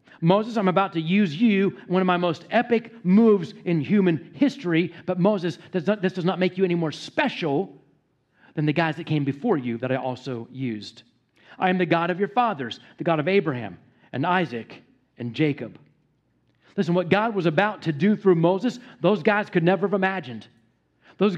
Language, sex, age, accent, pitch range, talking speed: English, male, 40-59, American, 160-205 Hz, 190 wpm